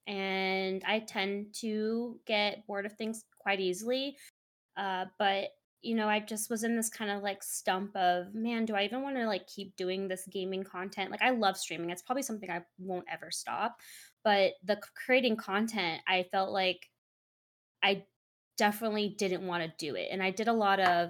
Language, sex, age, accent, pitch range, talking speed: English, female, 20-39, American, 185-220 Hz, 190 wpm